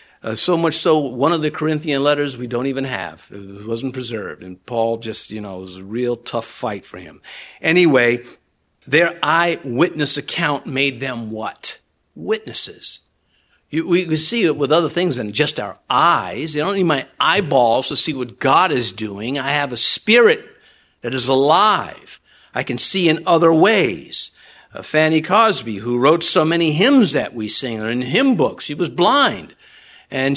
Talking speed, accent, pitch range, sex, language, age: 180 wpm, American, 135-205 Hz, male, English, 50-69